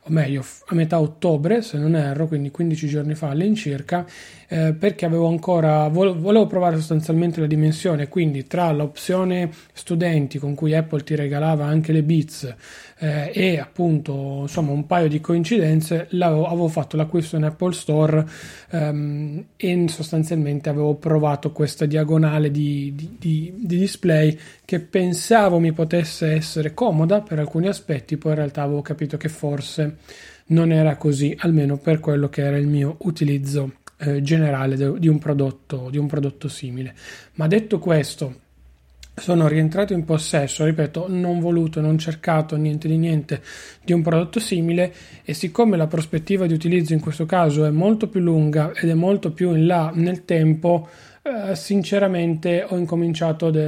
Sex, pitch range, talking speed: male, 150-175 Hz, 155 wpm